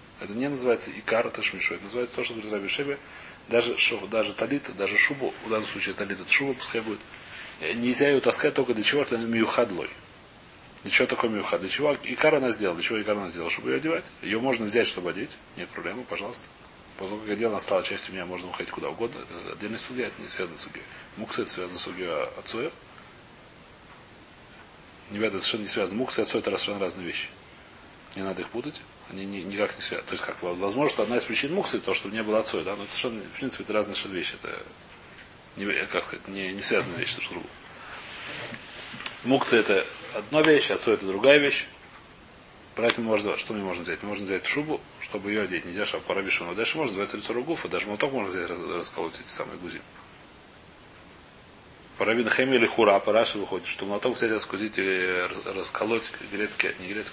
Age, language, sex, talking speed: 30-49, Russian, male, 185 wpm